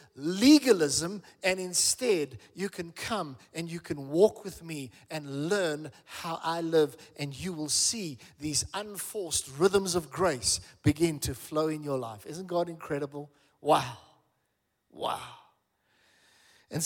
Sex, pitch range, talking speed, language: male, 165-205 Hz, 135 wpm, English